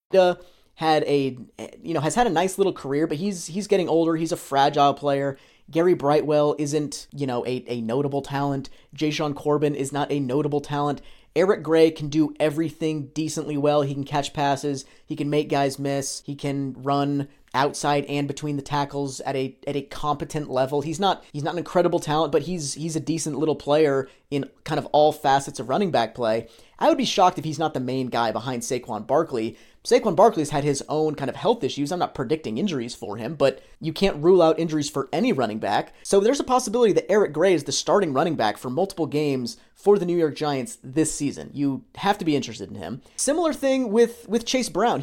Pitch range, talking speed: 140-165 Hz, 215 wpm